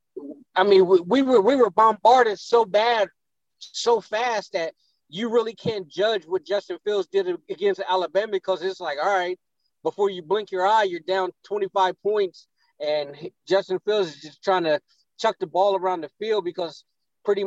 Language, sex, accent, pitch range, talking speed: English, male, American, 180-220 Hz, 175 wpm